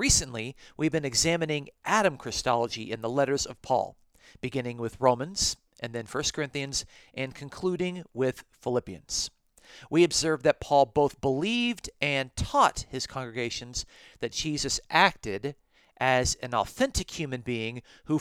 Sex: male